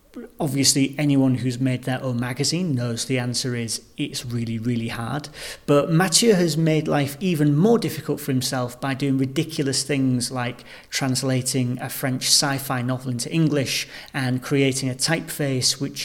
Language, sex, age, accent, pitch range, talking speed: English, male, 40-59, British, 130-145 Hz, 155 wpm